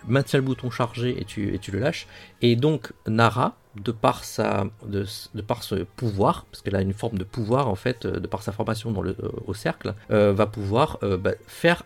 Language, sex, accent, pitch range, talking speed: French, male, French, 100-125 Hz, 225 wpm